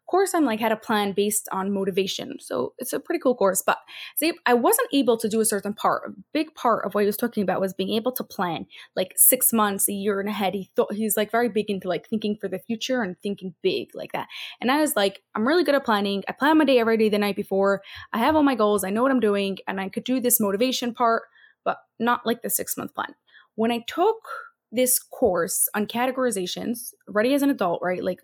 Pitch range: 200-255 Hz